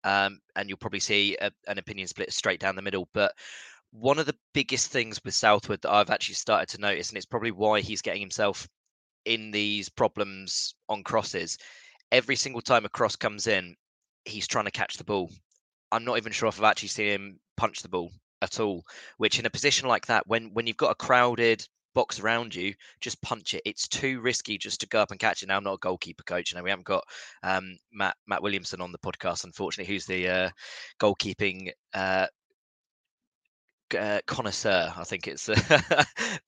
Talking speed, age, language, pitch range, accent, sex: 205 wpm, 20-39, English, 95-115 Hz, British, male